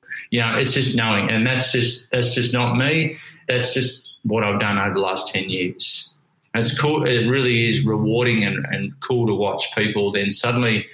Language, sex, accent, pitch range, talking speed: English, male, Australian, 105-125 Hz, 205 wpm